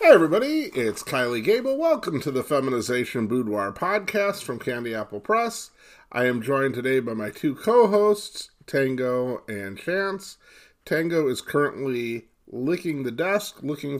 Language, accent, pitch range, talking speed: English, American, 130-190 Hz, 140 wpm